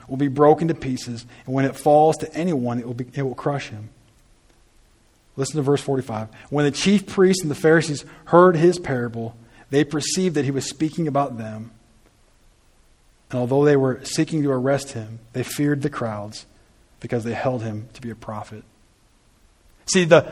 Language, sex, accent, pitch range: English, male, American, 115-150 Hz